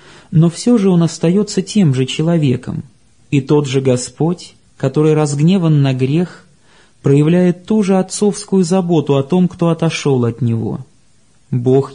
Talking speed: 140 wpm